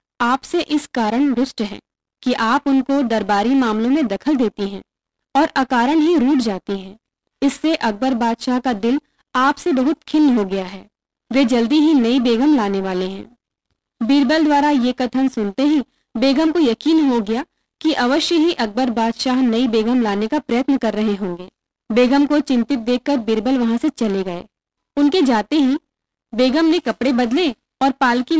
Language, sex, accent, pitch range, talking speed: Hindi, female, native, 230-285 Hz, 165 wpm